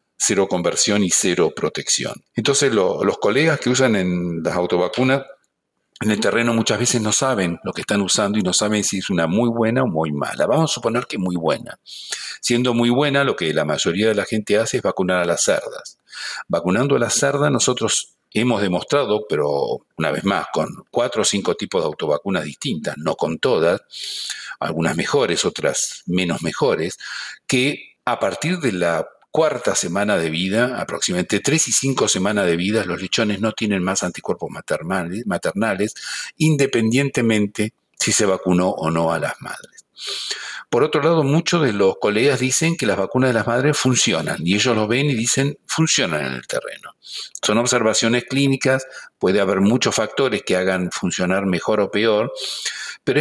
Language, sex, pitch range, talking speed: Spanish, male, 95-140 Hz, 175 wpm